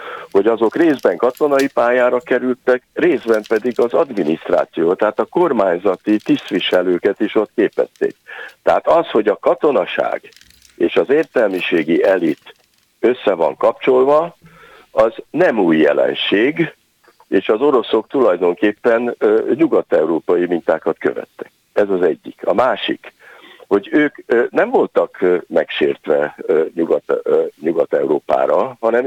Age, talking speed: 60-79, 110 wpm